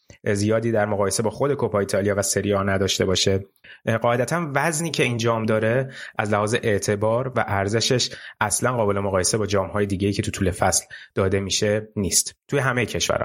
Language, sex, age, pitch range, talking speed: Persian, male, 30-49, 100-130 Hz, 170 wpm